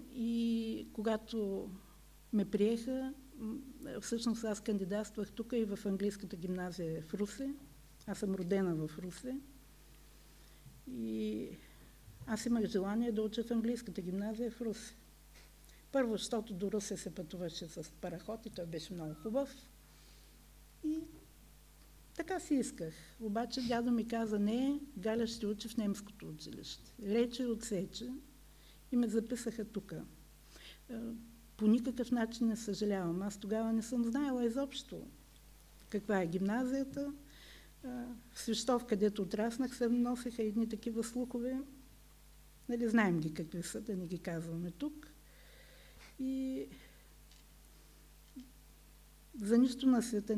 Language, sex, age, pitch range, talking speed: Bulgarian, female, 60-79, 195-245 Hz, 120 wpm